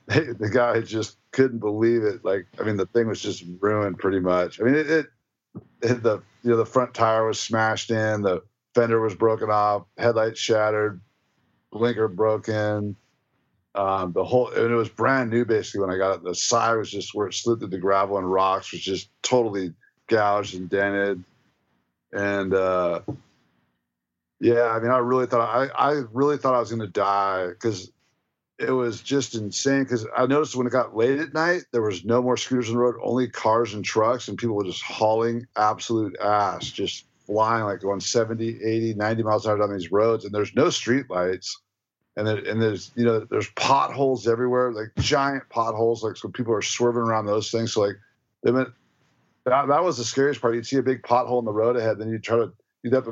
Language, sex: English, male